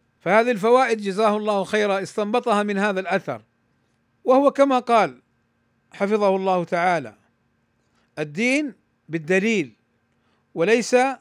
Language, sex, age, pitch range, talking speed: Arabic, male, 50-69, 175-245 Hz, 95 wpm